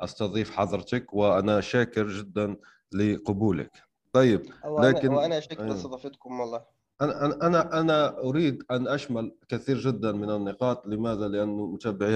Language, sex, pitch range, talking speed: Arabic, male, 95-120 Hz, 120 wpm